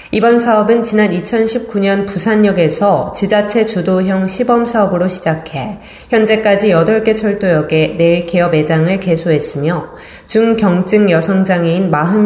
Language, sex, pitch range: Korean, female, 165-210 Hz